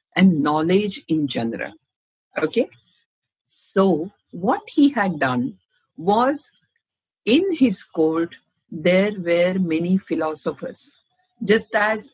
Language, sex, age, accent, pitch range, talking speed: English, female, 60-79, Indian, 175-220 Hz, 100 wpm